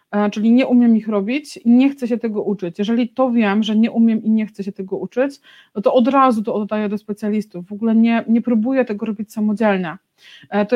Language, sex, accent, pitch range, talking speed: Polish, female, native, 210-245 Hz, 225 wpm